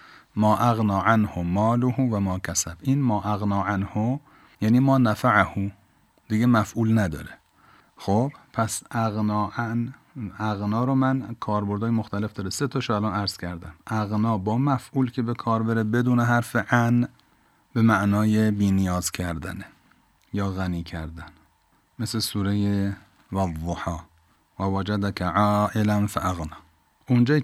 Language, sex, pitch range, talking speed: Persian, male, 95-115 Hz, 125 wpm